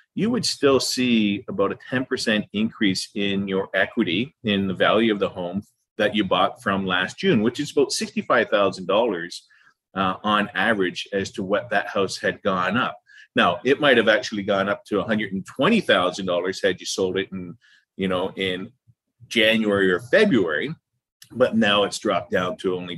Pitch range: 95-120 Hz